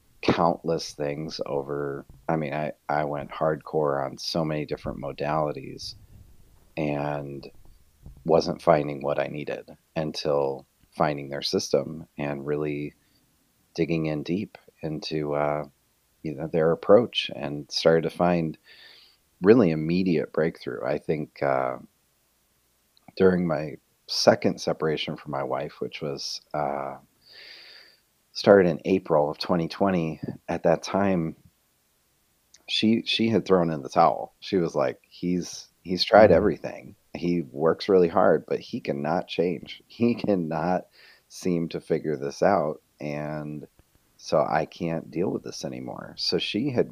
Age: 30-49